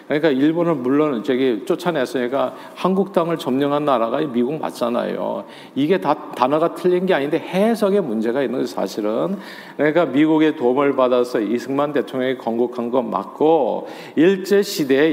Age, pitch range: 50-69, 125-170 Hz